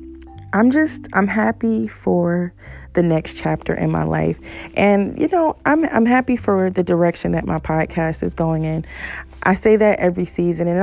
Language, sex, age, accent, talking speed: English, female, 30-49, American, 185 wpm